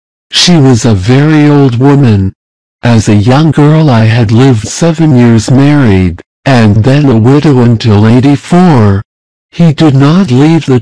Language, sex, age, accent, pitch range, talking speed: English, male, 60-79, American, 105-145 Hz, 150 wpm